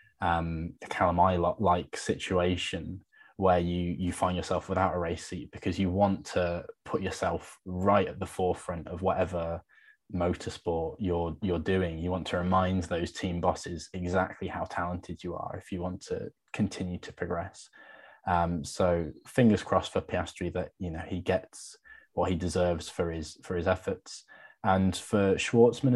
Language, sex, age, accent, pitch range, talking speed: English, male, 20-39, British, 85-95 Hz, 165 wpm